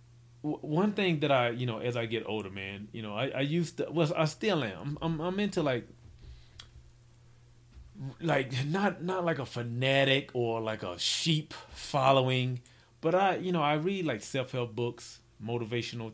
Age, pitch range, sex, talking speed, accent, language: 30-49, 115-140 Hz, male, 180 wpm, American, English